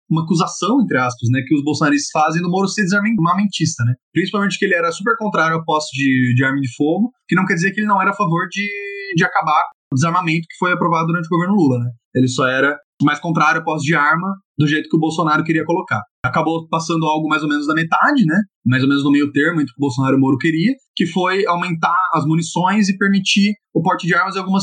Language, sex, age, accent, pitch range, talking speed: Portuguese, male, 20-39, Brazilian, 145-200 Hz, 250 wpm